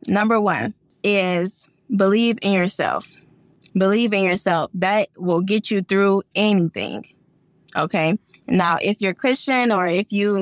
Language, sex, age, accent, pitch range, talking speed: English, female, 20-39, American, 180-225 Hz, 130 wpm